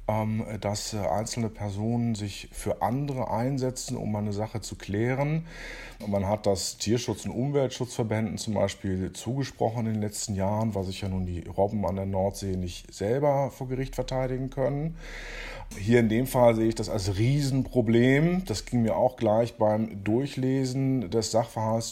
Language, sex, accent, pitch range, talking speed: German, male, German, 110-140 Hz, 160 wpm